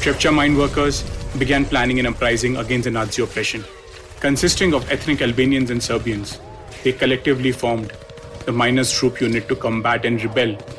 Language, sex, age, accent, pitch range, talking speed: English, male, 30-49, Indian, 115-135 Hz, 155 wpm